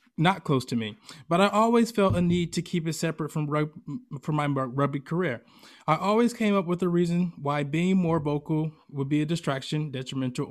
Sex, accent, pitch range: male, American, 140-180 Hz